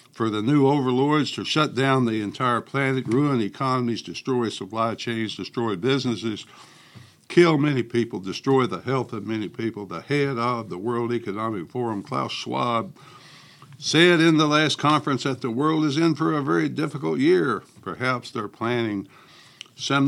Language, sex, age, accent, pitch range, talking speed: English, male, 60-79, American, 115-140 Hz, 160 wpm